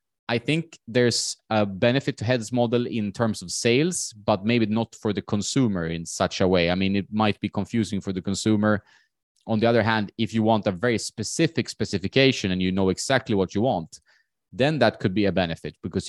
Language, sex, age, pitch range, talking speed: English, male, 20-39, 95-115 Hz, 210 wpm